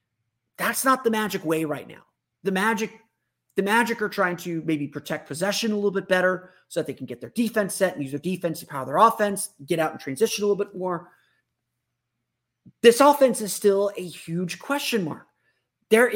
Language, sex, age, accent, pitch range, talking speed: English, male, 30-49, American, 155-220 Hz, 200 wpm